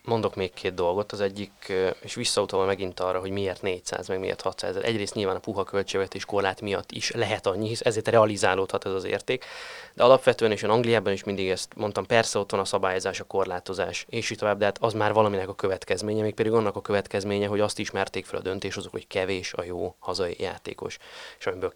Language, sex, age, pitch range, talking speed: Hungarian, male, 20-39, 95-115 Hz, 220 wpm